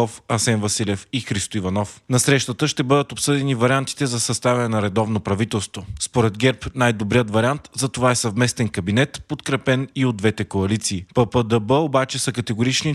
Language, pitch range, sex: Bulgarian, 110-135 Hz, male